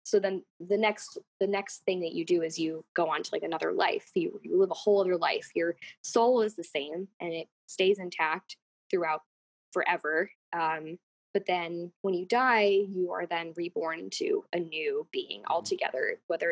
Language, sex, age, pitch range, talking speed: English, female, 10-29, 170-220 Hz, 190 wpm